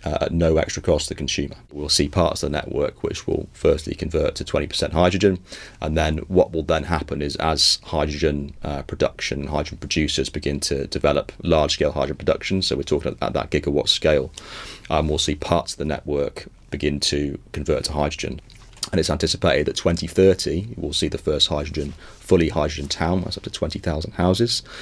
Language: English